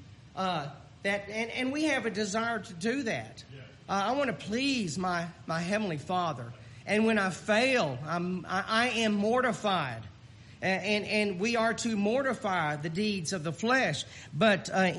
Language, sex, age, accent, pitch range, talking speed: English, male, 40-59, American, 150-220 Hz, 170 wpm